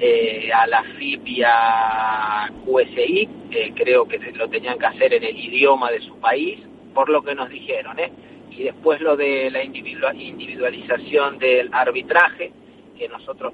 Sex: male